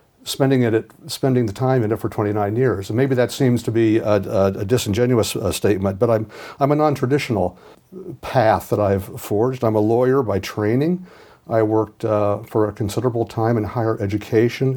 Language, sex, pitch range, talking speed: Swedish, male, 105-130 Hz, 190 wpm